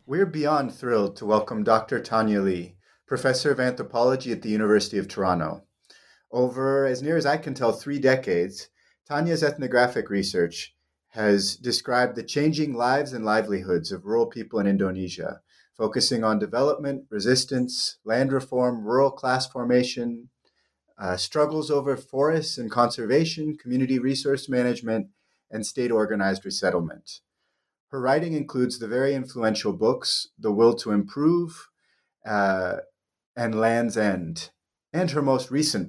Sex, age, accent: male, 30-49, American